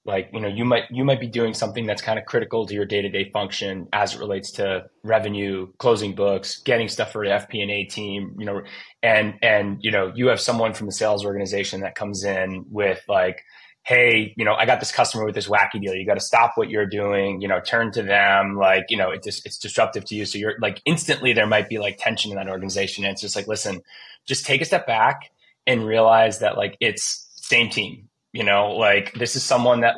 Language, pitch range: English, 100-120 Hz